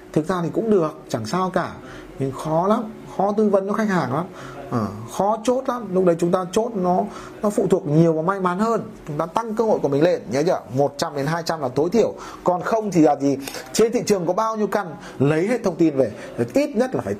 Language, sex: Vietnamese, male